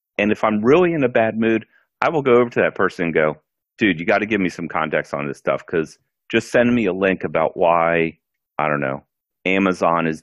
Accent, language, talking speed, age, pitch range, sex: American, English, 240 wpm, 40-59, 80-100 Hz, male